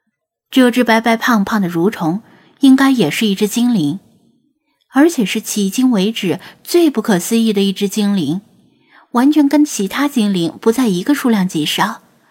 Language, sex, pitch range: Chinese, female, 195-260 Hz